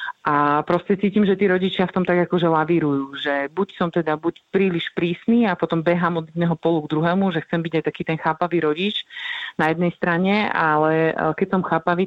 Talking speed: 205 wpm